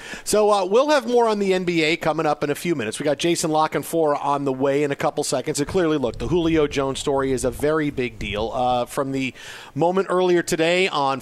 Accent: American